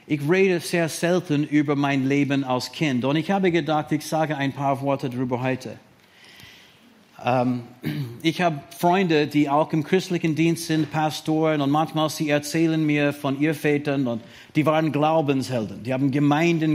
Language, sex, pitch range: German, male, 130-160 Hz